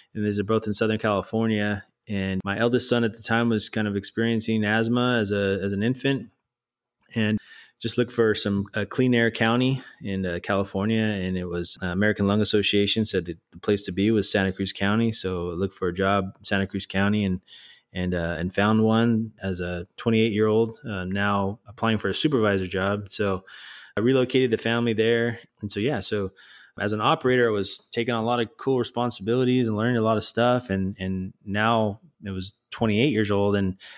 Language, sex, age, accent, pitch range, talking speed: English, male, 20-39, American, 95-115 Hz, 210 wpm